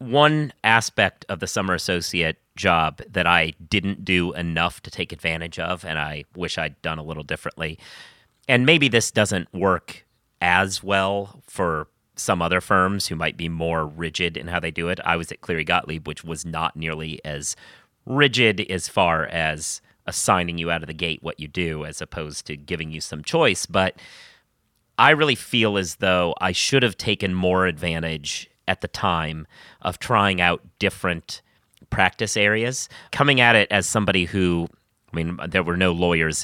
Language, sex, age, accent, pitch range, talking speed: English, male, 30-49, American, 80-100 Hz, 180 wpm